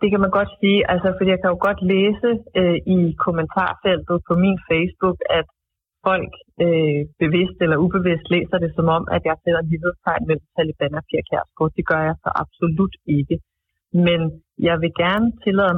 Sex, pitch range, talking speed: female, 165-195 Hz, 175 wpm